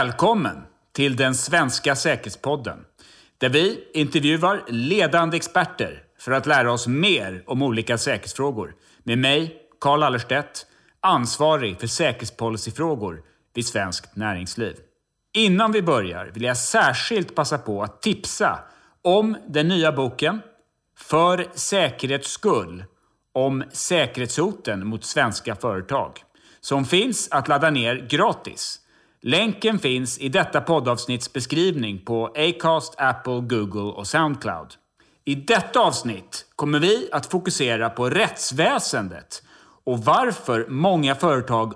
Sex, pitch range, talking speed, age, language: male, 115-165 Hz, 115 wpm, 30-49, Swedish